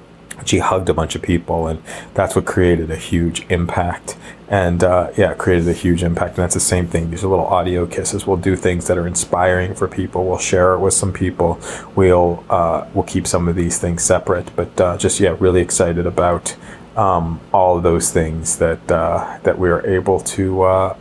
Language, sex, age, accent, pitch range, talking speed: English, male, 30-49, American, 85-95 Hz, 210 wpm